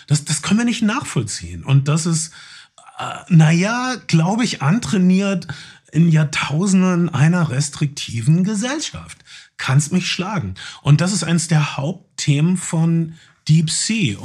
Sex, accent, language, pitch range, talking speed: male, German, German, 130-155 Hz, 130 wpm